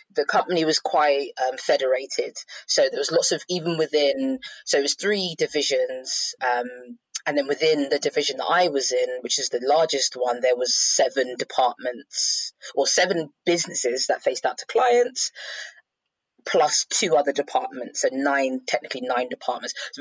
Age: 20-39